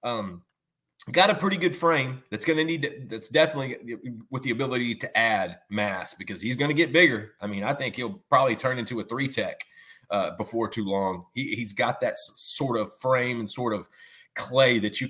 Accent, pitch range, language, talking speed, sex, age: American, 110-150 Hz, English, 205 wpm, male, 30-49